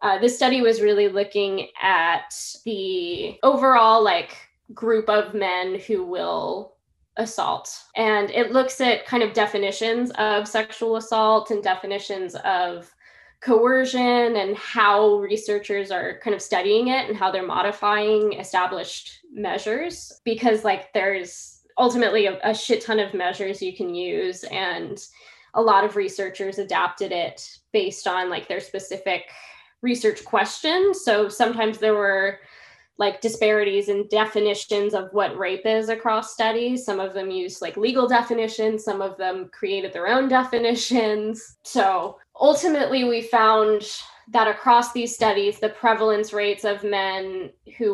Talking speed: 140 wpm